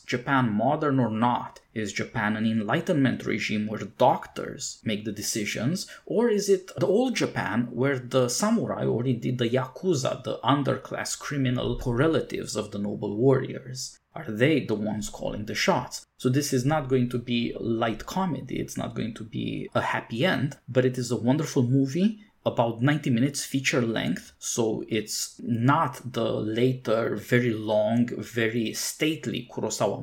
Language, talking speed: English, 160 wpm